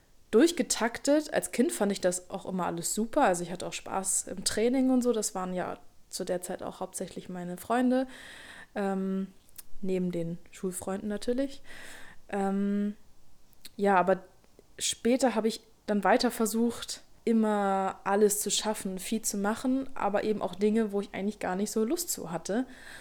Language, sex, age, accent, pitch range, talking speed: German, female, 20-39, German, 190-220 Hz, 165 wpm